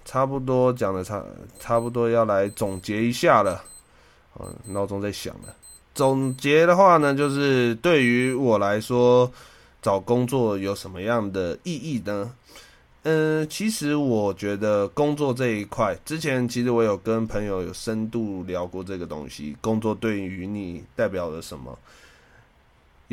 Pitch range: 95-125 Hz